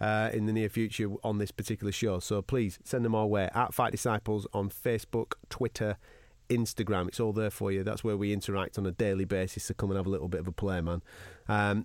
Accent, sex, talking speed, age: British, male, 245 wpm, 30-49